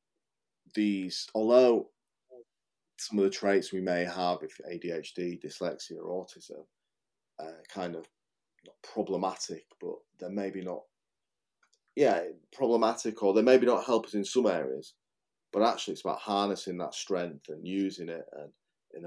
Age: 30-49